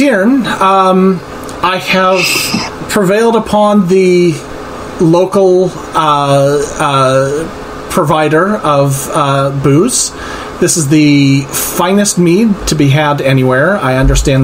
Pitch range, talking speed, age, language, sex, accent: 130-170 Hz, 100 wpm, 30-49, English, male, American